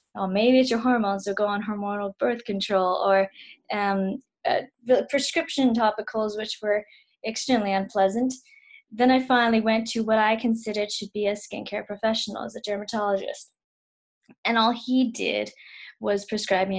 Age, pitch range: 20-39, 195-230 Hz